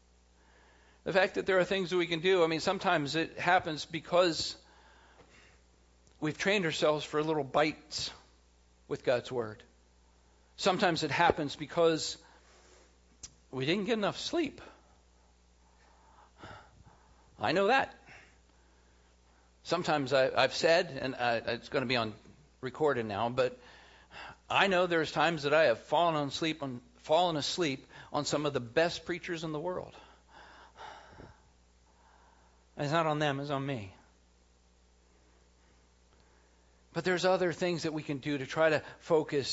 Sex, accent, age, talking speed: male, American, 50-69, 140 wpm